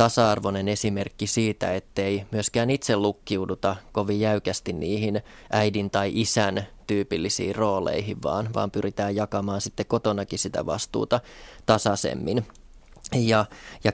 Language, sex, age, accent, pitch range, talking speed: Finnish, male, 20-39, native, 105-115 Hz, 110 wpm